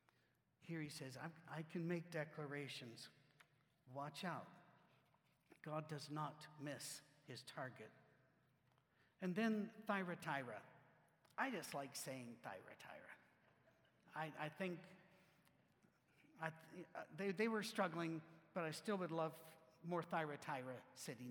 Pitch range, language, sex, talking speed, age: 150-190 Hz, English, male, 110 wpm, 60-79